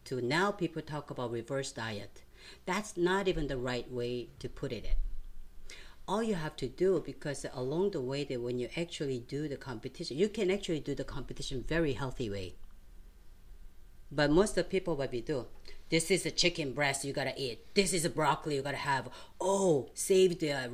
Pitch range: 130-180 Hz